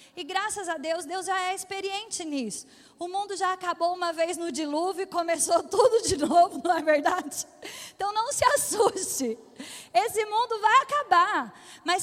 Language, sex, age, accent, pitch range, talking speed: Portuguese, female, 20-39, Brazilian, 315-390 Hz, 170 wpm